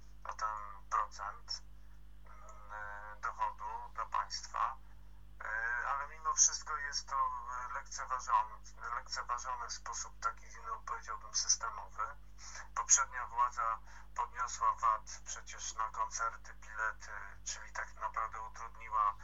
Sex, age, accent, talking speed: male, 50-69, native, 95 wpm